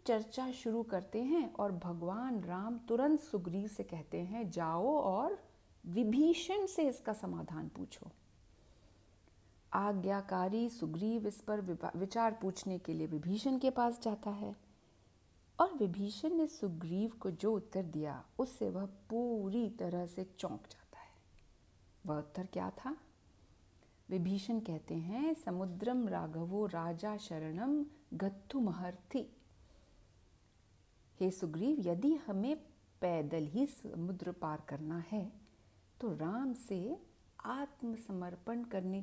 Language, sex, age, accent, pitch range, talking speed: Hindi, female, 50-69, native, 170-240 Hz, 120 wpm